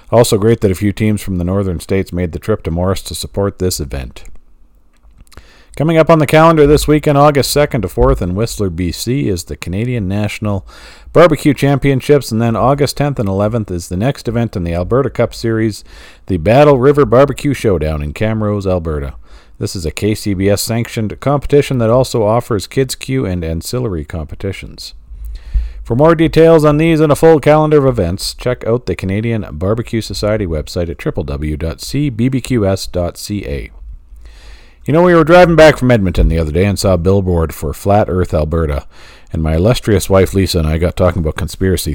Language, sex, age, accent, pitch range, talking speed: English, male, 40-59, American, 80-125 Hz, 180 wpm